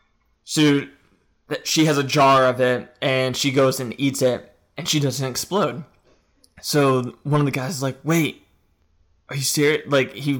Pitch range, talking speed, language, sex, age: 125-140 Hz, 175 wpm, English, male, 20-39